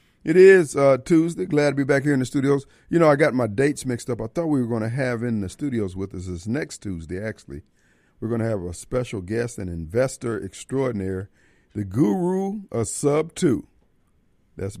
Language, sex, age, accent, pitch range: Japanese, male, 50-69, American, 100-145 Hz